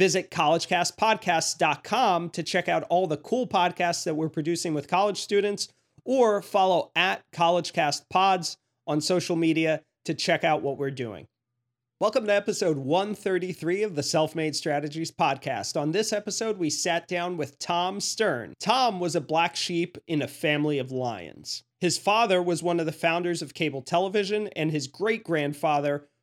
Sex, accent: male, American